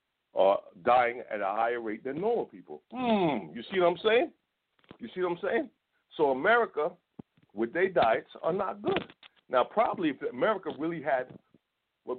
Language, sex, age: English, male, 50-69